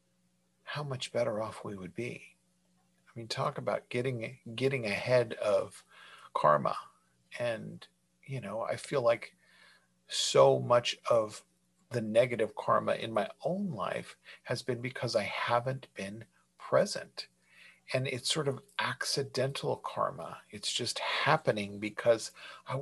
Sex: male